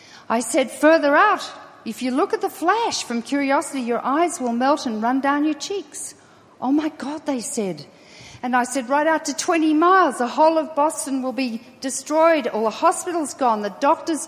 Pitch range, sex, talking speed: 225-300 Hz, female, 200 wpm